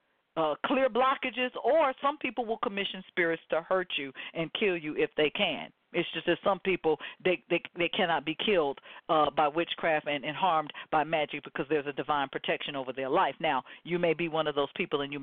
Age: 50-69